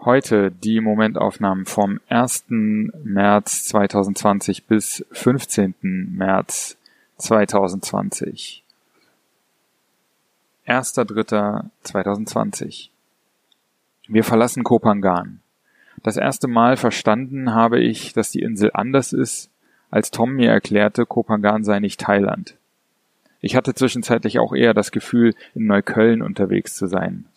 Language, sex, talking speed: German, male, 105 wpm